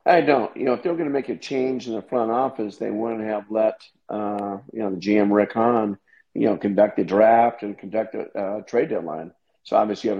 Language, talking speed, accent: English, 240 wpm, American